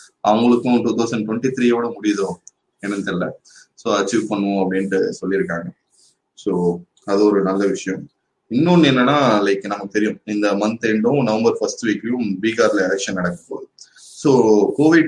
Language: Tamil